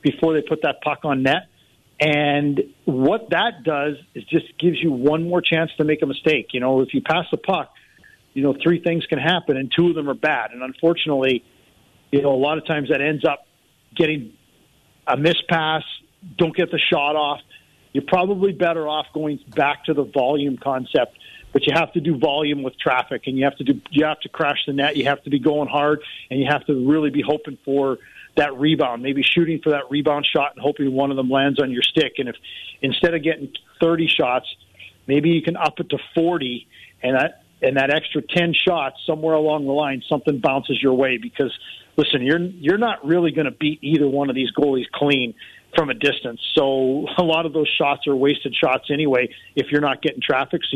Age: 50-69